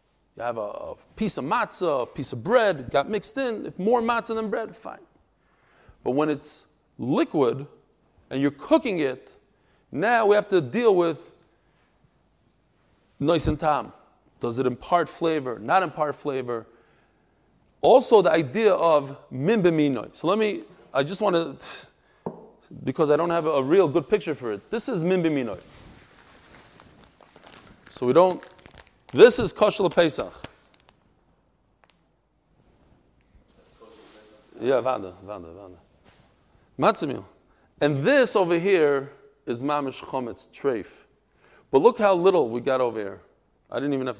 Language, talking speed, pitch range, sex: English, 135 wpm, 135-195 Hz, male